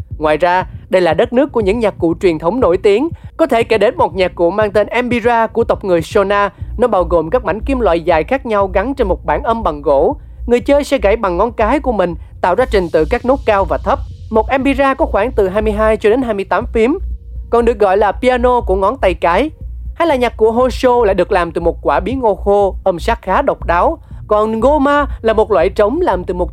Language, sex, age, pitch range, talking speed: Vietnamese, male, 20-39, 185-255 Hz, 250 wpm